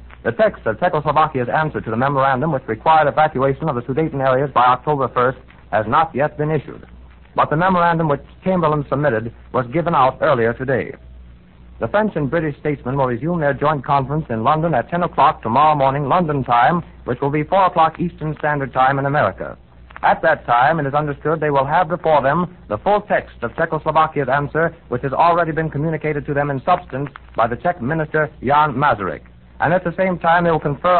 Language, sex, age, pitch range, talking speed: English, male, 60-79, 130-165 Hz, 200 wpm